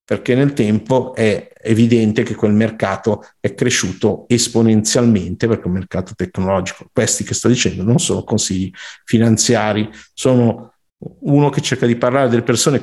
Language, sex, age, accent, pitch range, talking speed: Italian, male, 50-69, native, 110-135 Hz, 150 wpm